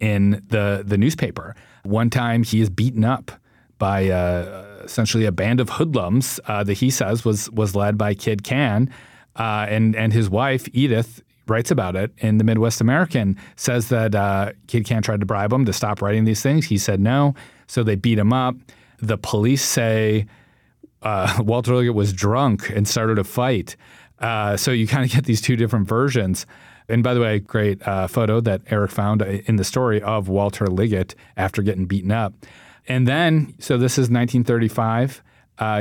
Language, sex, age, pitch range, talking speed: English, male, 30-49, 100-120 Hz, 185 wpm